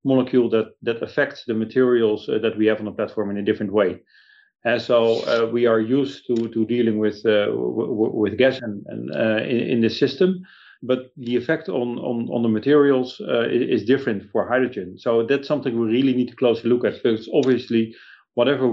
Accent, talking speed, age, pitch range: Dutch, 210 wpm, 40-59, 110-130 Hz